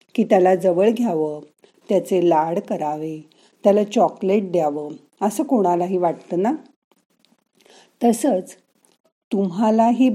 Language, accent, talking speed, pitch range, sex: Marathi, native, 95 wpm, 175-230 Hz, female